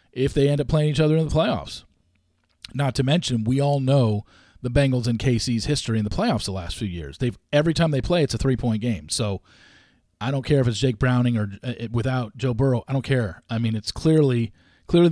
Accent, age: American, 40-59